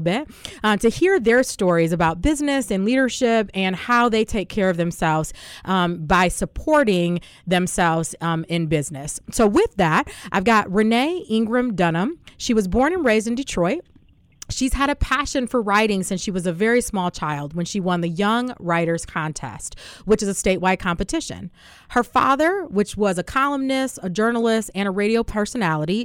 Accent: American